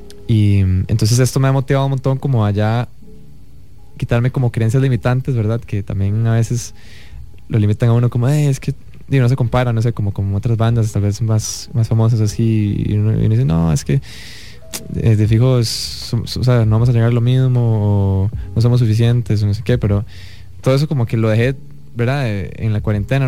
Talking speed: 210 wpm